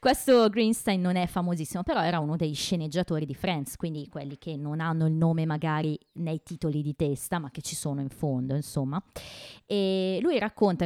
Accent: native